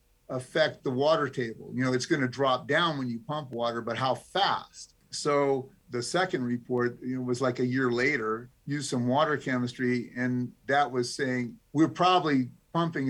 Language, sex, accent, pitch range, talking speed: English, male, American, 120-140 Hz, 185 wpm